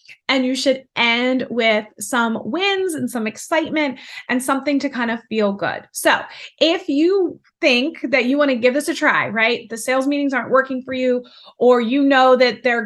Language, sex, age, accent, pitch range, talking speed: English, female, 20-39, American, 220-285 Hz, 195 wpm